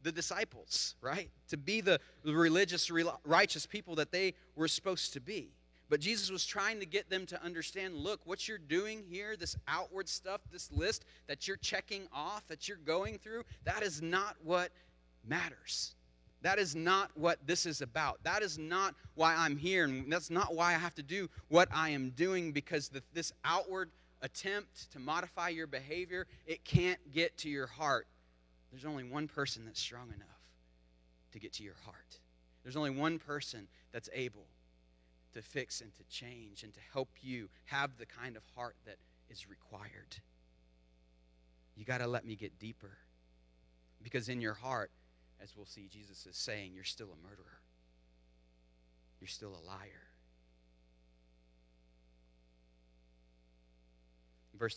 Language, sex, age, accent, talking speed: English, male, 30-49, American, 160 wpm